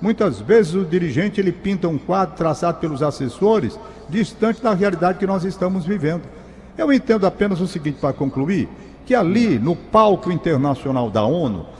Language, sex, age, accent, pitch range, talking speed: Portuguese, male, 60-79, Brazilian, 175-225 Hz, 165 wpm